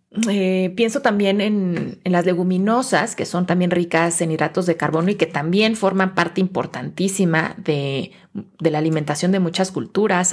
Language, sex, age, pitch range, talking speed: Spanish, female, 30-49, 165-205 Hz, 165 wpm